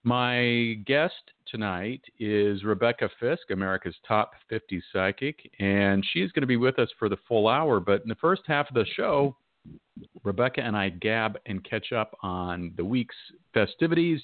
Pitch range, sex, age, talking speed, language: 95-120 Hz, male, 50-69, 170 wpm, English